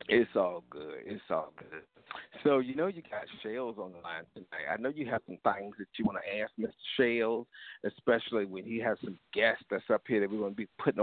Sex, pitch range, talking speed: male, 110-160 Hz, 240 wpm